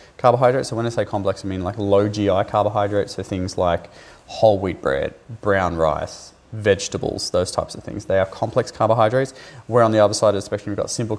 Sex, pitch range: male, 95-115 Hz